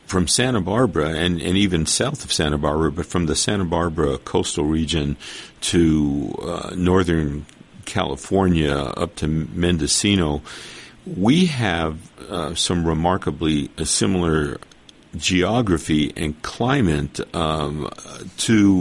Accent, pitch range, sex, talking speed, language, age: American, 75-95 Hz, male, 115 wpm, English, 50-69